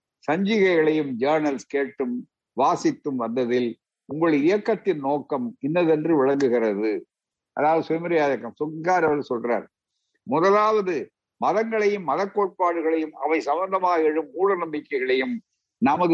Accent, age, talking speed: native, 60-79, 80 wpm